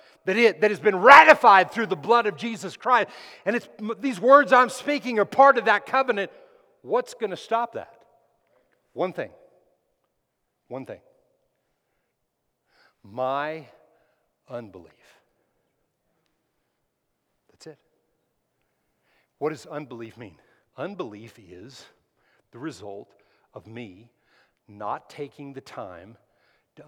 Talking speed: 115 wpm